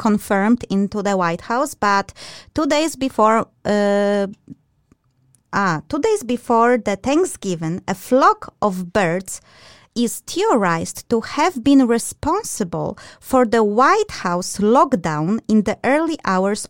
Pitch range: 185-245 Hz